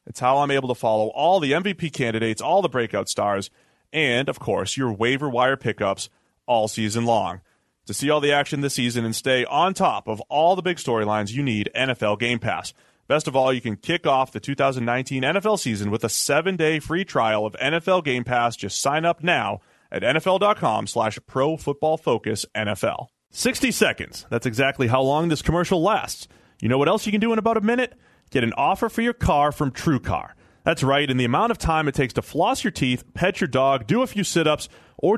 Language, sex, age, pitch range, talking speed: English, male, 30-49, 120-170 Hz, 210 wpm